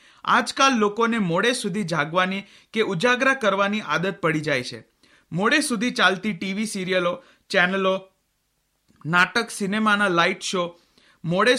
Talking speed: 95 wpm